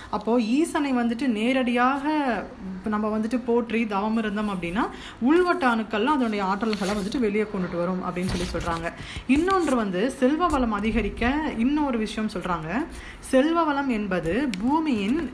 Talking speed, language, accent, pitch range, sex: 130 wpm, Tamil, native, 195-250 Hz, female